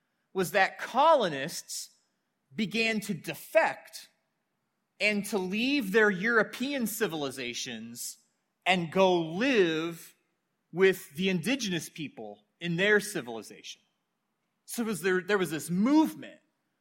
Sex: male